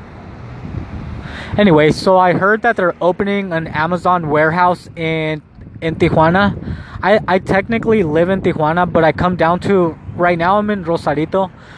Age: 20-39